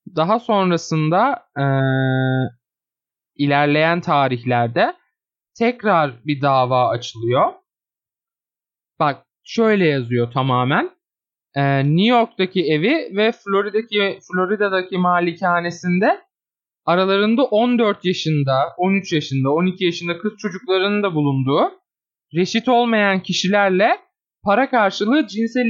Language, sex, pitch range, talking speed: Turkish, male, 150-225 Hz, 90 wpm